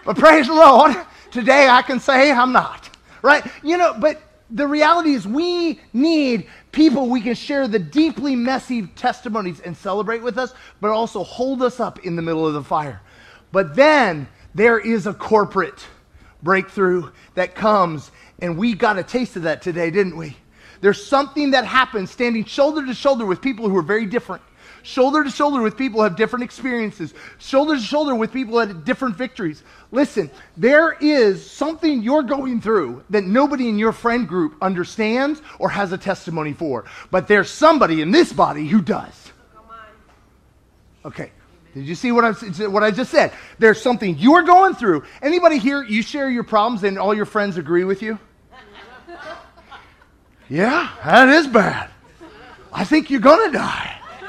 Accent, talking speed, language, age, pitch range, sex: American, 175 wpm, English, 30-49, 195-275 Hz, male